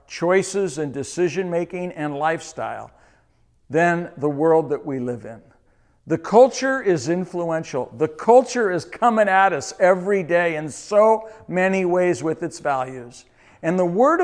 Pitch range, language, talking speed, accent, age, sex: 160-230 Hz, English, 145 wpm, American, 60-79, male